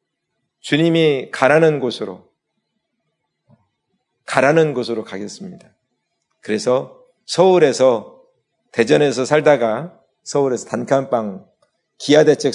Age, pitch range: 40-59, 125-170 Hz